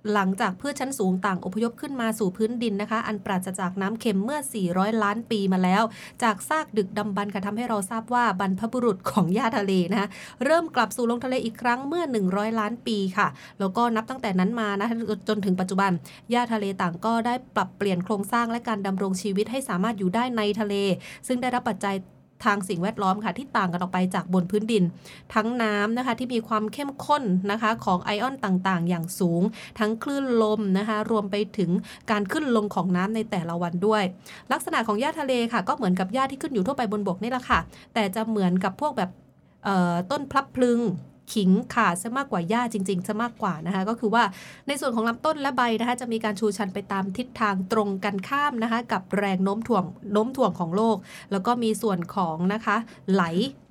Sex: female